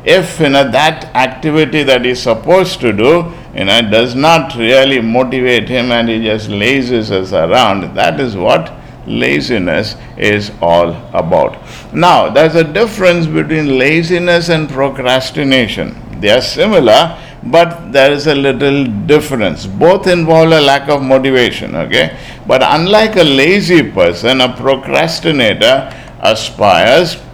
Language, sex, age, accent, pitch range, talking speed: English, male, 50-69, Indian, 125-165 Hz, 140 wpm